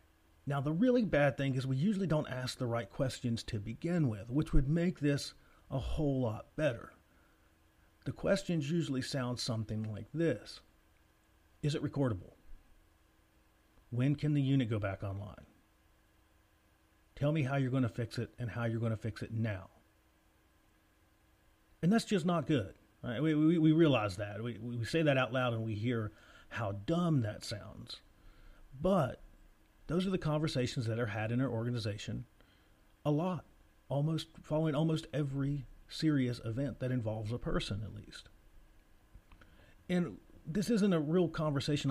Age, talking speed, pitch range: 40-59, 155 wpm, 100-145 Hz